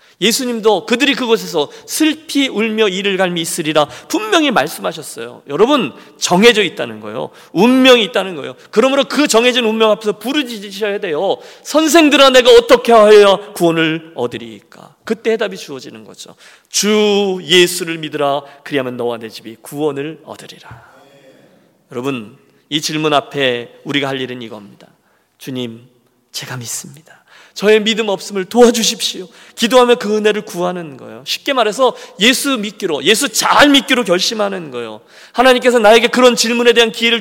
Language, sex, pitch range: Korean, male, 160-235 Hz